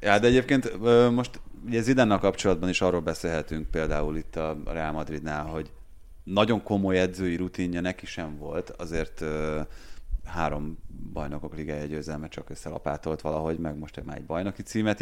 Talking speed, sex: 150 wpm, male